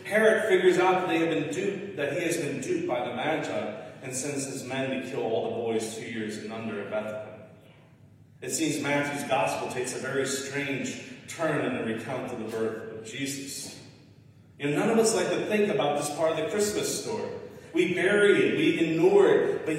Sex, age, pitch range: male, 30-49, 125-180 Hz